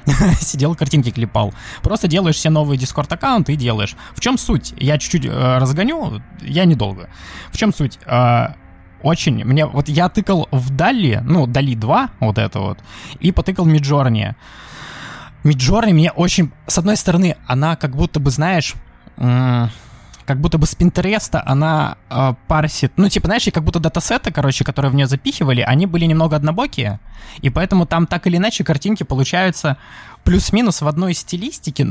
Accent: native